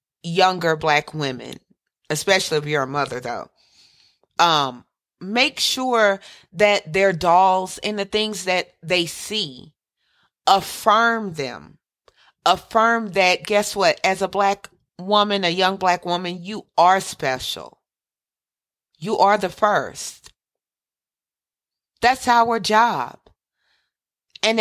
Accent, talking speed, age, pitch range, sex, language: American, 110 wpm, 40-59, 165-210 Hz, female, English